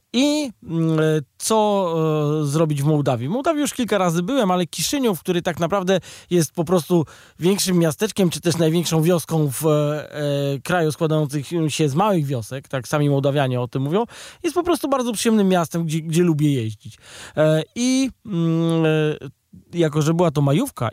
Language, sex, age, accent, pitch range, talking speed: Polish, male, 20-39, native, 145-180 Hz, 150 wpm